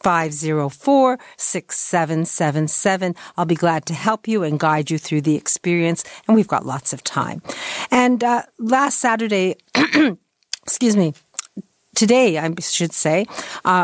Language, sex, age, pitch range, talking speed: English, female, 50-69, 160-195 Hz, 155 wpm